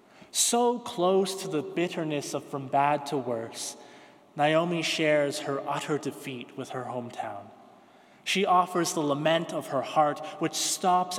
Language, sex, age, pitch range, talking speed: English, male, 20-39, 135-170 Hz, 145 wpm